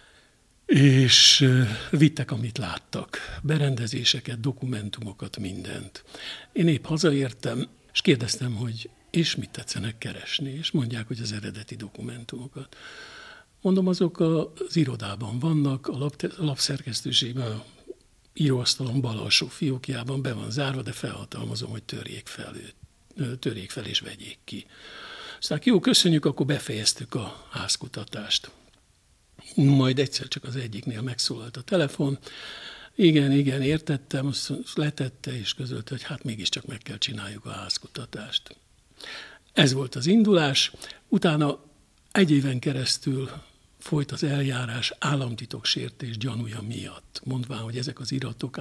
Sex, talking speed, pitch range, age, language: male, 120 wpm, 120-150 Hz, 60-79, Hungarian